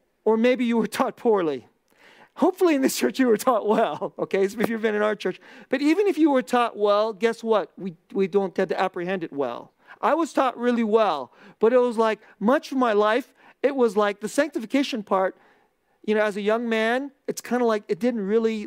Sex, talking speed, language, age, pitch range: male, 225 wpm, English, 40-59, 185-245 Hz